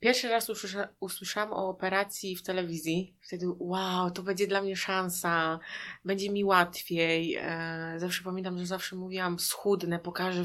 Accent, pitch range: native, 170-185 Hz